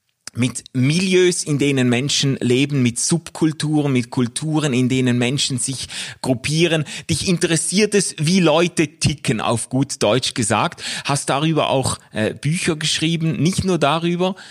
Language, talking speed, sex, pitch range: German, 140 wpm, male, 120-165 Hz